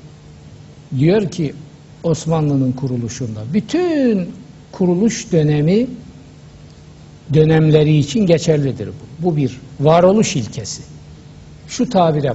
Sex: male